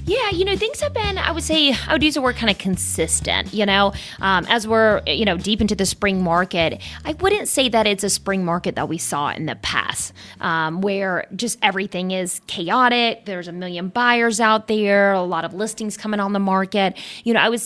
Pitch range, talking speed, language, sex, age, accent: 175-225 Hz, 230 wpm, English, female, 30-49, American